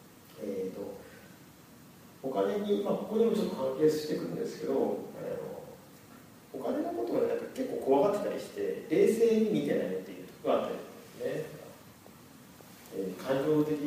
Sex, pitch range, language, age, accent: male, 140-210 Hz, Japanese, 40-59, native